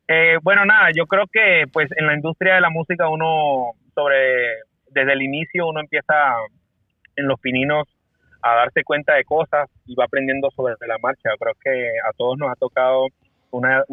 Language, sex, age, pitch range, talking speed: Spanish, male, 30-49, 115-140 Hz, 185 wpm